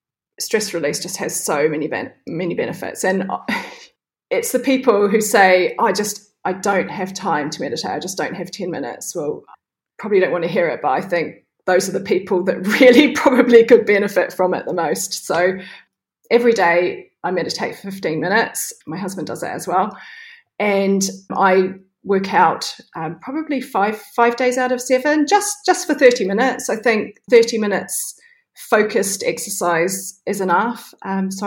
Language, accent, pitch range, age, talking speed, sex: English, British, 180-240 Hz, 30-49, 175 wpm, female